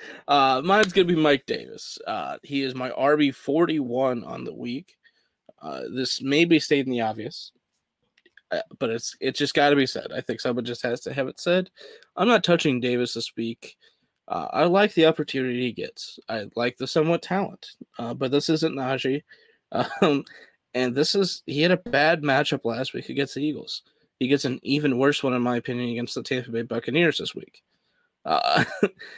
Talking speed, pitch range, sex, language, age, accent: 195 wpm, 125-155 Hz, male, English, 20-39, American